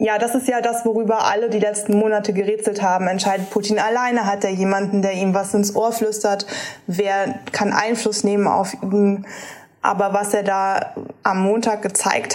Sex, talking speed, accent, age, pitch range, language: female, 180 wpm, German, 20-39, 190-210 Hz, German